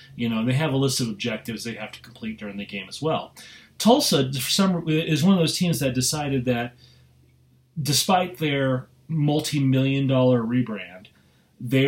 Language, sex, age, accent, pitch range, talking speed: English, male, 30-49, American, 110-140 Hz, 160 wpm